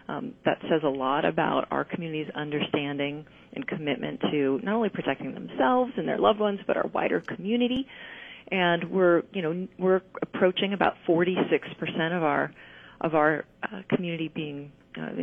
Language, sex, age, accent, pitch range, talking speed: English, female, 30-49, American, 150-190 Hz, 160 wpm